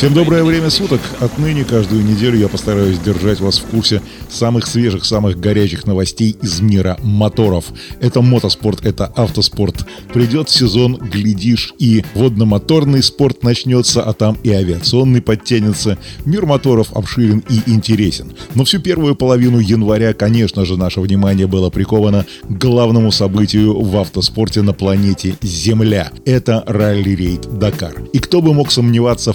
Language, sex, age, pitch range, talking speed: Russian, male, 20-39, 100-125 Hz, 140 wpm